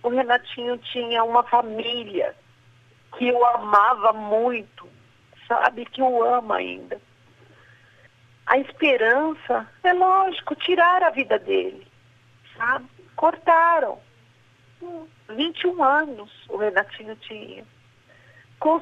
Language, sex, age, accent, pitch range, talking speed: Portuguese, female, 50-69, Brazilian, 175-260 Hz, 95 wpm